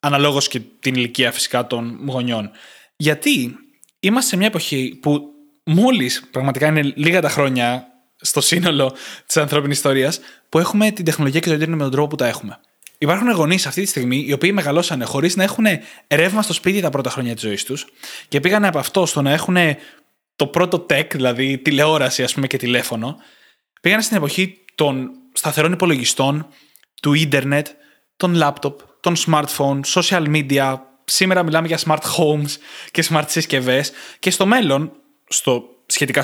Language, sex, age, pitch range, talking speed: Greek, male, 20-39, 135-175 Hz, 165 wpm